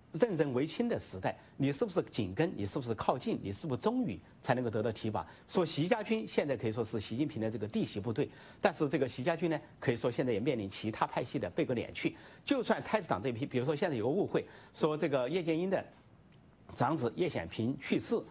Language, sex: English, male